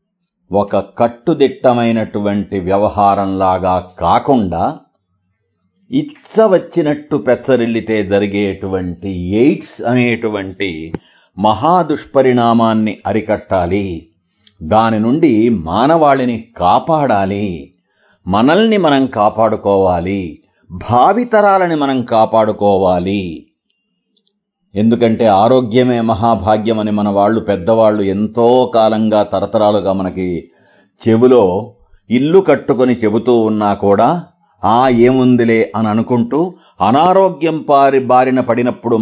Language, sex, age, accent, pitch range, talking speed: Telugu, male, 50-69, native, 100-130 Hz, 75 wpm